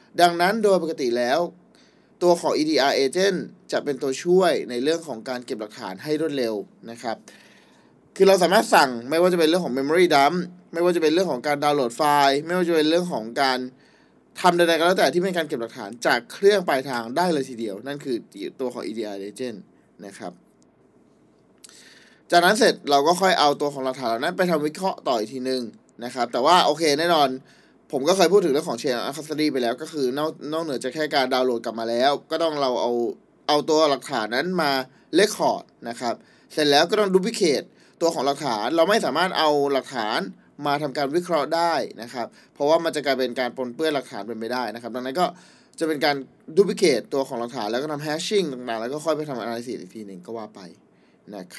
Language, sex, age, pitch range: Thai, male, 20-39, 130-175 Hz